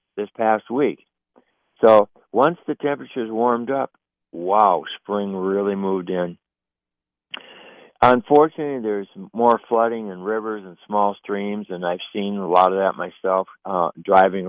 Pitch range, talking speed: 95-120 Hz, 135 wpm